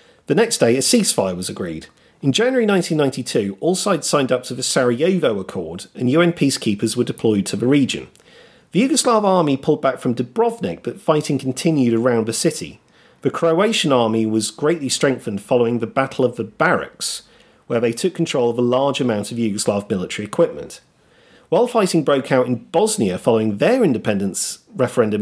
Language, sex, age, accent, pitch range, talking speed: English, male, 40-59, British, 115-165 Hz, 175 wpm